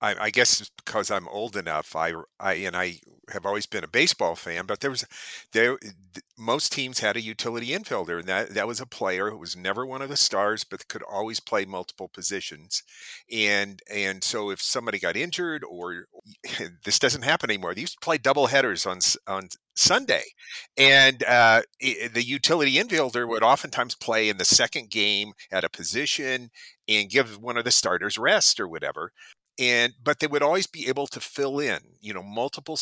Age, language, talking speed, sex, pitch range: 50-69, English, 195 wpm, male, 105-135 Hz